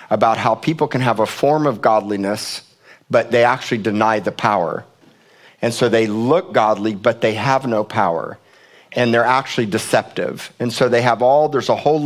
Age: 50-69